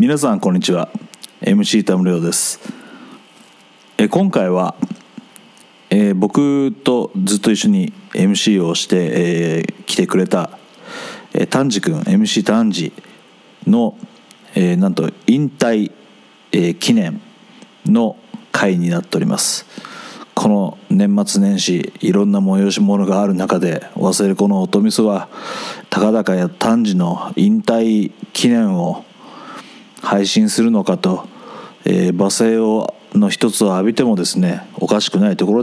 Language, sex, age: Japanese, male, 40-59